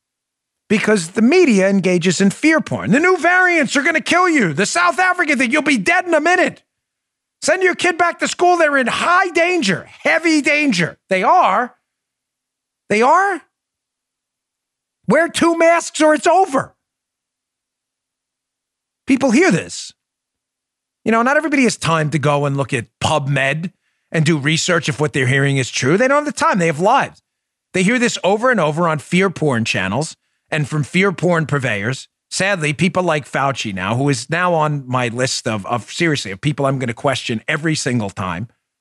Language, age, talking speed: English, 40-59, 180 wpm